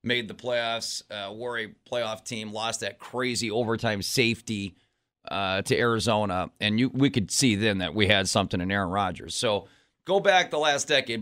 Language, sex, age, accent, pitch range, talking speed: English, male, 30-49, American, 105-125 Hz, 185 wpm